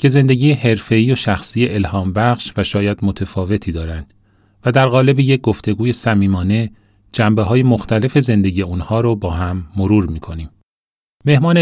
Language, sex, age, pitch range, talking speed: Persian, male, 30-49, 105-125 Hz, 145 wpm